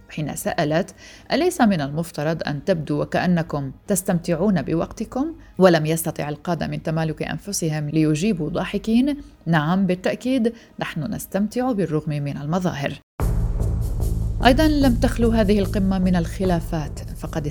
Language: Arabic